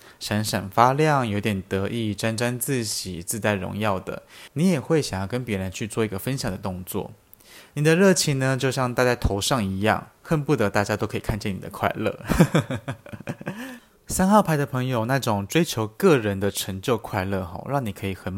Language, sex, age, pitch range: Chinese, male, 20-39, 105-145 Hz